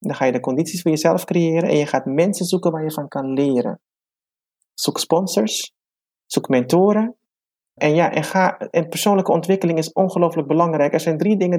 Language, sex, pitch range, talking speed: Dutch, male, 135-175 Hz, 175 wpm